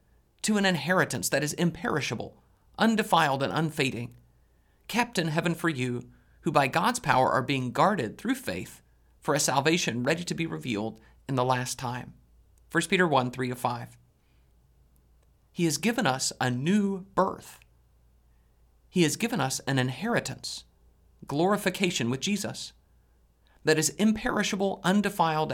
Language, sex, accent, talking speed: English, male, American, 135 wpm